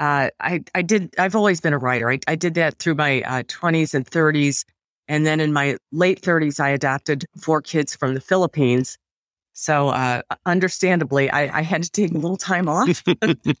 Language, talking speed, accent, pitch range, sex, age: English, 195 wpm, American, 135-170 Hz, female, 40-59